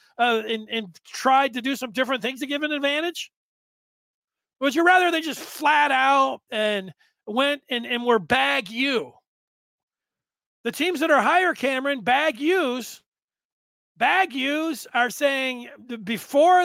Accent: American